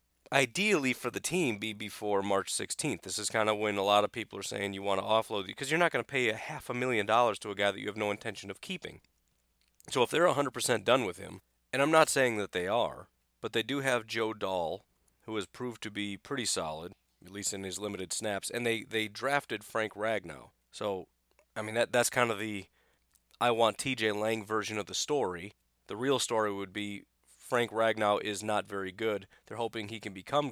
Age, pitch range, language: 30-49, 95-115 Hz, English